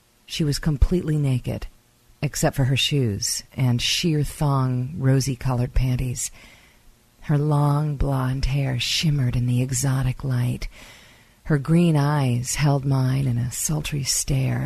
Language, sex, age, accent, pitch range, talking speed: English, female, 50-69, American, 125-150 Hz, 125 wpm